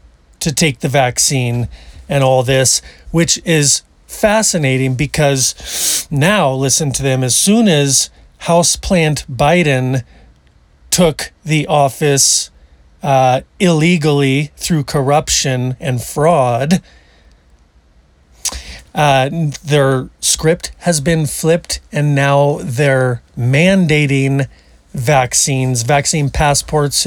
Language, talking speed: English, 95 wpm